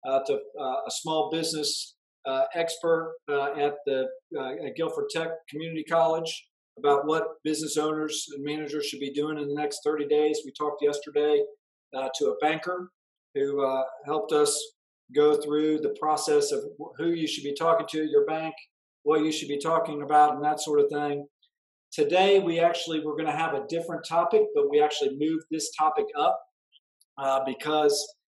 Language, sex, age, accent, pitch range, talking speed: English, male, 50-69, American, 150-210 Hz, 185 wpm